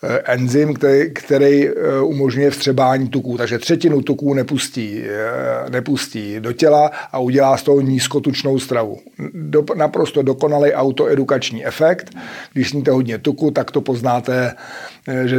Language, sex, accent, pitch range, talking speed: Czech, male, native, 130-150 Hz, 115 wpm